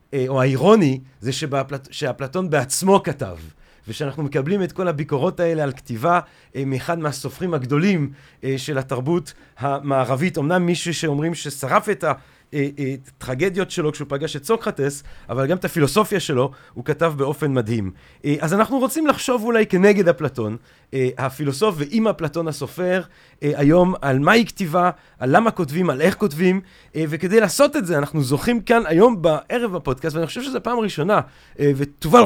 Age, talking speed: 30-49, 145 wpm